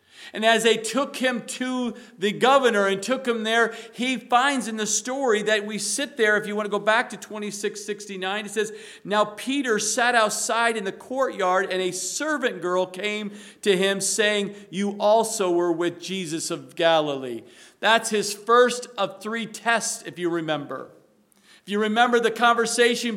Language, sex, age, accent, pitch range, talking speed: English, male, 50-69, American, 195-245 Hz, 175 wpm